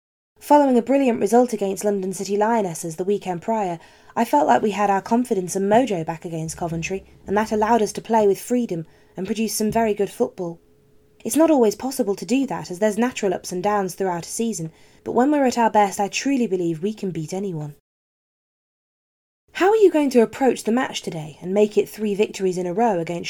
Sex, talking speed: female, 215 wpm